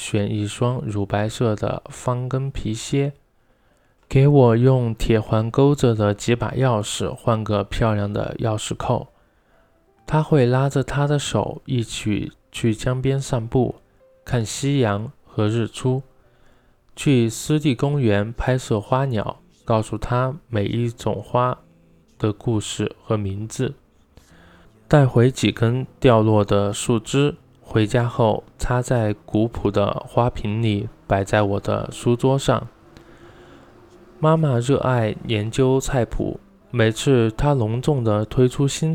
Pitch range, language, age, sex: 105-130 Hz, Chinese, 20-39, male